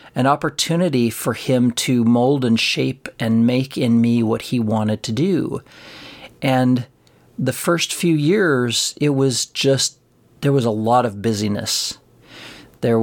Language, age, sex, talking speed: English, 40-59, male, 145 wpm